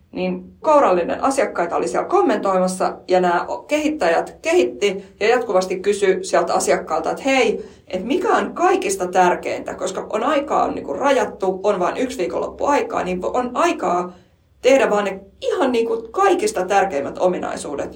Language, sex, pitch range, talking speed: Finnish, female, 180-250 Hz, 145 wpm